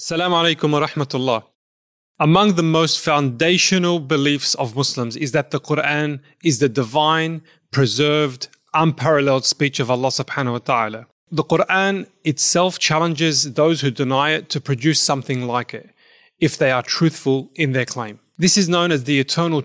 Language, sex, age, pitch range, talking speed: English, male, 30-49, 130-160 Hz, 160 wpm